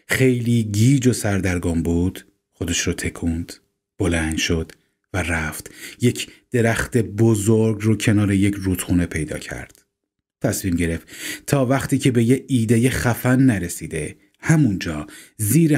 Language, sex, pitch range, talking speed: Persian, male, 90-120 Hz, 125 wpm